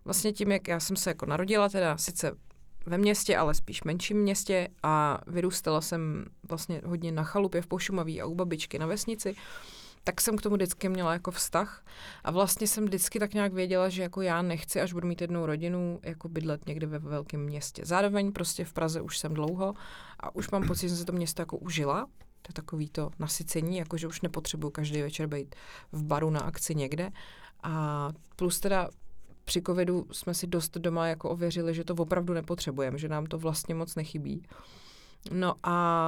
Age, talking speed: 30-49, 195 wpm